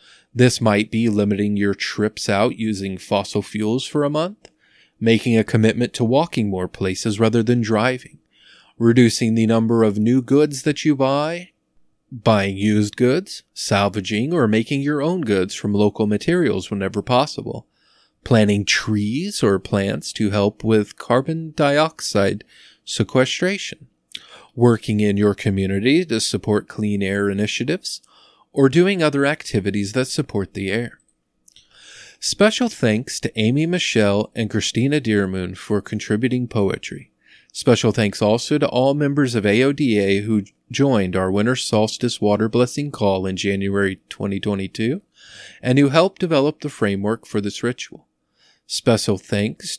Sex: male